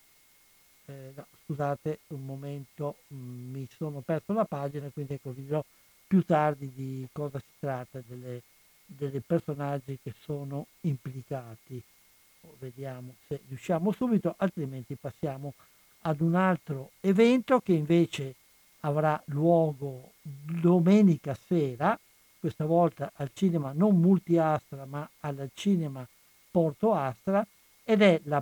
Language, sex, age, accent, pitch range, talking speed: Italian, male, 60-79, native, 140-185 Hz, 115 wpm